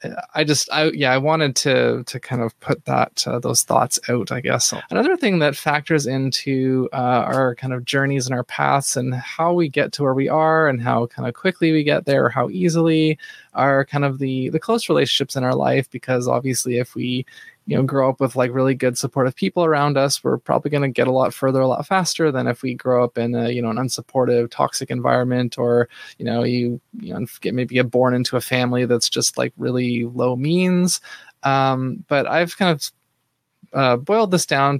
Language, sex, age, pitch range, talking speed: English, male, 20-39, 125-150 Hz, 220 wpm